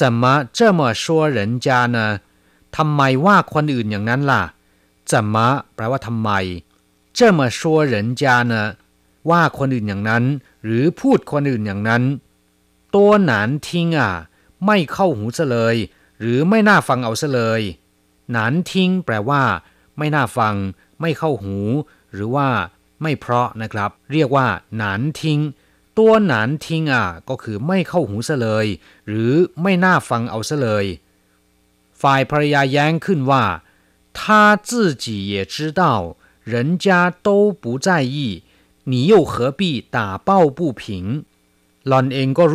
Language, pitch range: Thai, 105-155 Hz